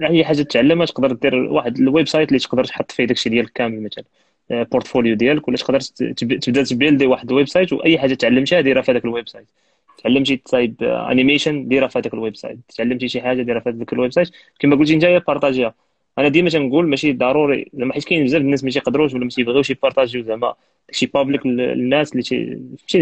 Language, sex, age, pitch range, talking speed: Arabic, male, 20-39, 125-150 Hz, 200 wpm